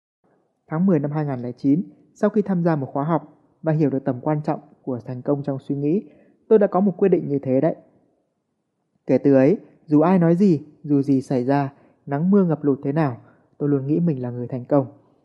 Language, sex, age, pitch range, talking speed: Vietnamese, male, 20-39, 135-170 Hz, 225 wpm